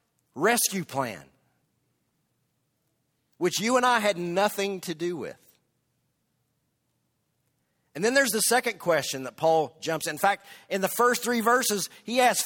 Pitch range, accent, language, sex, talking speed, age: 165-230 Hz, American, English, male, 145 wpm, 50-69